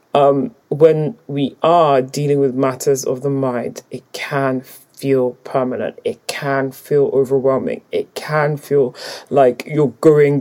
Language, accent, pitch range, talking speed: English, British, 130-155 Hz, 140 wpm